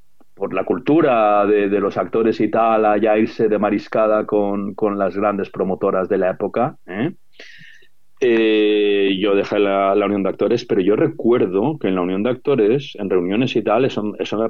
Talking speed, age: 190 wpm, 40-59